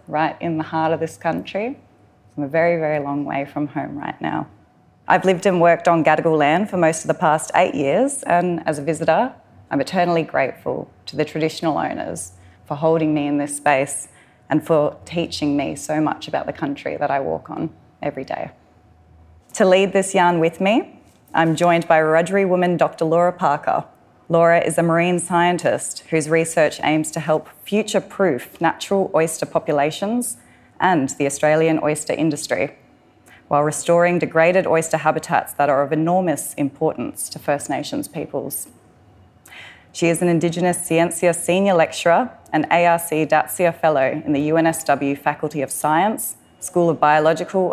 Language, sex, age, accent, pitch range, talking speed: English, female, 20-39, Australian, 145-170 Hz, 165 wpm